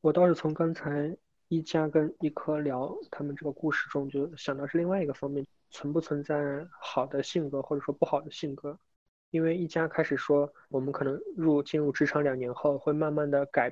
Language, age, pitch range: Chinese, 20-39, 140-155 Hz